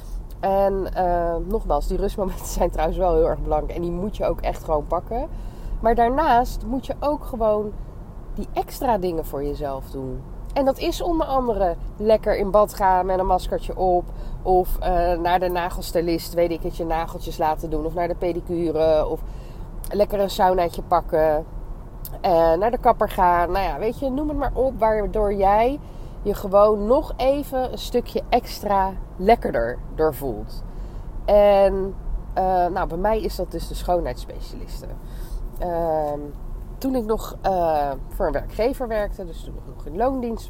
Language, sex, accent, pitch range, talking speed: Dutch, female, Dutch, 160-215 Hz, 165 wpm